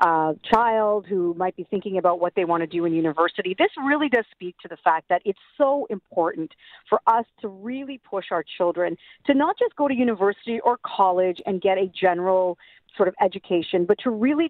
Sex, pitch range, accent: female, 180-230 Hz, American